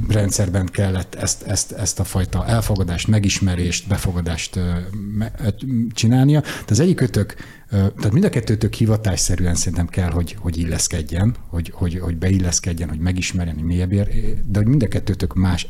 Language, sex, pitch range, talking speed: Hungarian, male, 85-105 Hz, 150 wpm